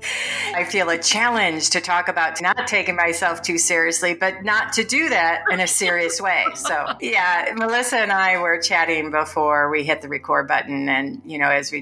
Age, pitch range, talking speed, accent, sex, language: 40-59, 145-170 Hz, 200 wpm, American, female, English